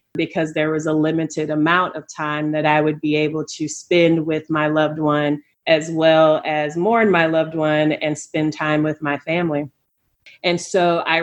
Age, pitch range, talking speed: 30-49, 155-175 Hz, 185 wpm